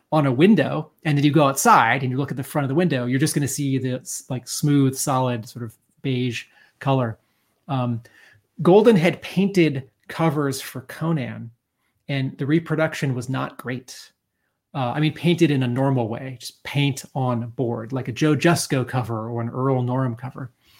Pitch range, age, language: 125-155 Hz, 30-49, English